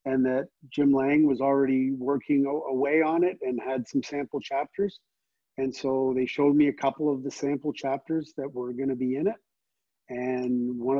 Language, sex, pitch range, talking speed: English, male, 130-150 Hz, 185 wpm